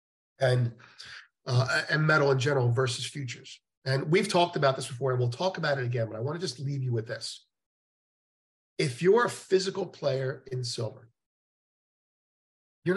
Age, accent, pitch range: 50-69, American, 120-145 Hz